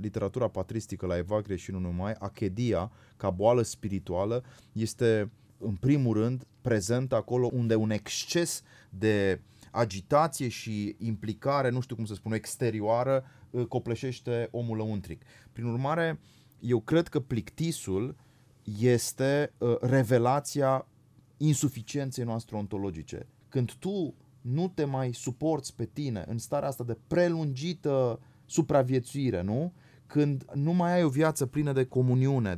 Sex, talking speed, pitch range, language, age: male, 125 wpm, 115-145 Hz, Romanian, 30-49